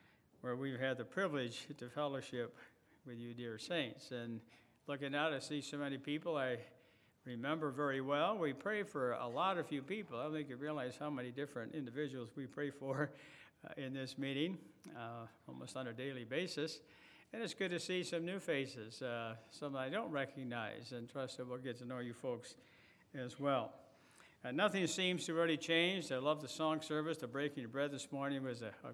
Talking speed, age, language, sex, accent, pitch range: 200 wpm, 60-79, English, male, American, 130-155 Hz